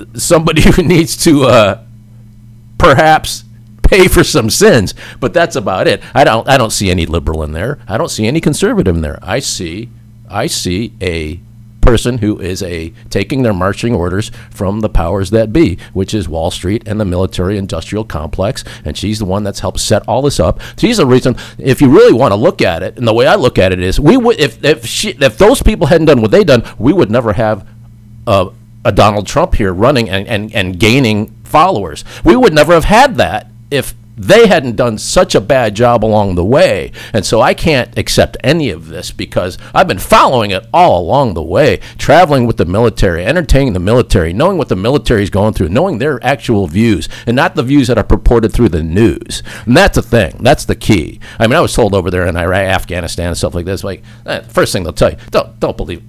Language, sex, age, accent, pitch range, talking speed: English, male, 50-69, American, 95-125 Hz, 220 wpm